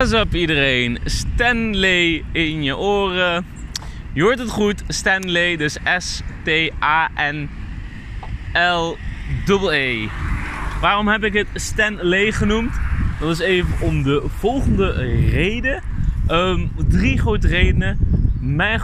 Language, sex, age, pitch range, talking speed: Dutch, male, 20-39, 95-165 Hz, 125 wpm